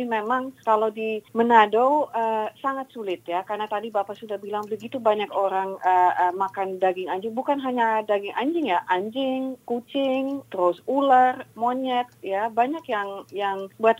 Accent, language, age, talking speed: native, Indonesian, 30-49, 155 wpm